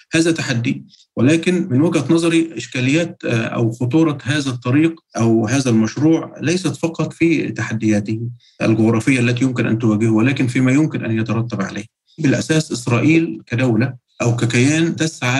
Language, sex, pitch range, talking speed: Arabic, male, 115-140 Hz, 135 wpm